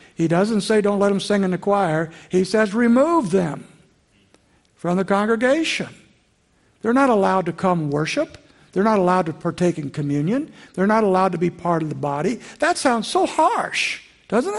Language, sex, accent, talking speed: English, male, American, 180 wpm